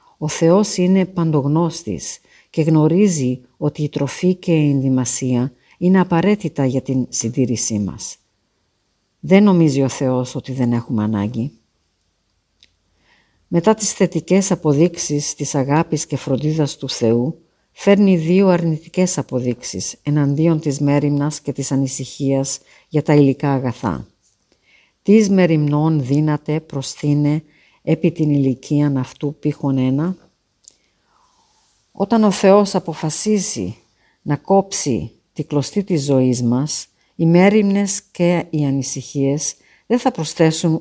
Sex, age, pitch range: female, 50-69, 135-175 Hz